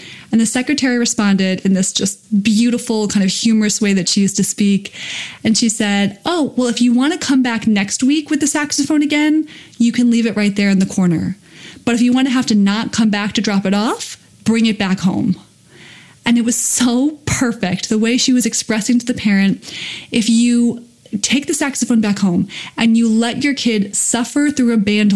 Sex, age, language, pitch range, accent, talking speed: female, 20-39, English, 200-240 Hz, American, 215 wpm